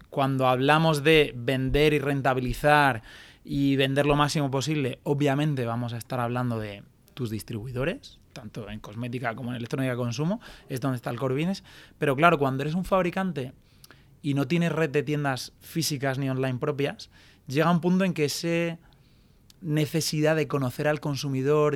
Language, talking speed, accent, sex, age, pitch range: Spanish, 165 wpm, Spanish, male, 20-39, 130-155 Hz